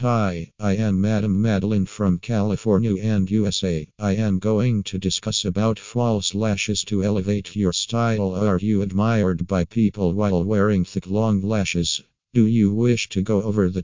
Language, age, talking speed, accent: English, 50-69, 165 wpm, American